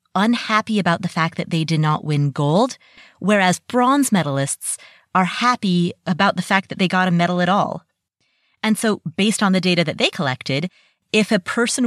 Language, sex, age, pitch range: English, female, 30-49, 175-235 Hz